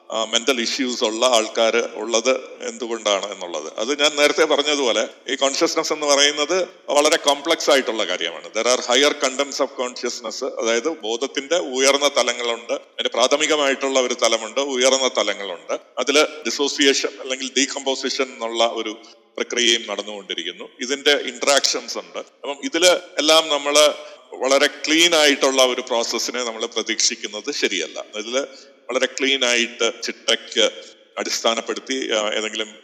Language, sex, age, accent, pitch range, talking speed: Malayalam, male, 40-59, native, 115-140 Hz, 120 wpm